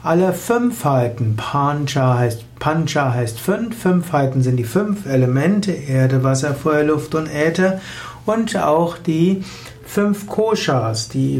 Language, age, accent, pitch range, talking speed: German, 60-79, German, 135-175 Hz, 135 wpm